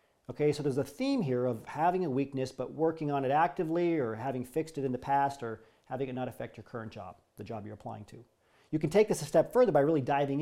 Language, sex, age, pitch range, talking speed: English, male, 40-59, 130-165 Hz, 260 wpm